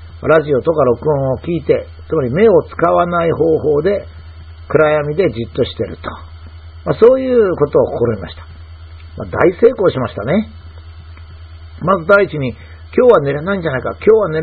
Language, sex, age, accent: Japanese, male, 50-69, native